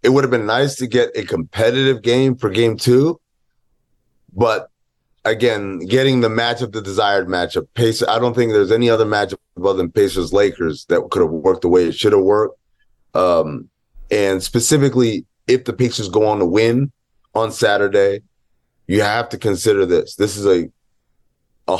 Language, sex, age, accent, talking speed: English, male, 30-49, American, 170 wpm